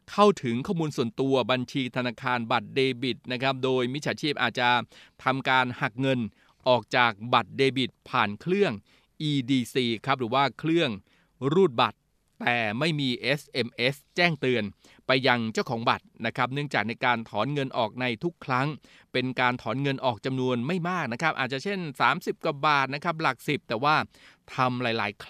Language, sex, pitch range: Thai, male, 120-150 Hz